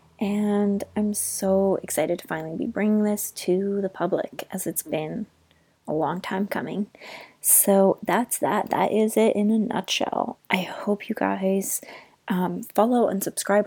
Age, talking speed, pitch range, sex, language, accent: 20-39, 160 wpm, 180-215 Hz, female, English, American